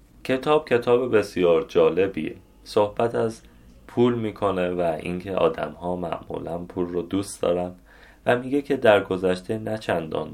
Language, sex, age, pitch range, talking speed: Persian, male, 30-49, 90-115 Hz, 140 wpm